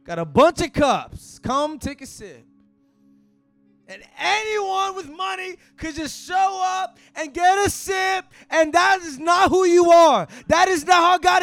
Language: English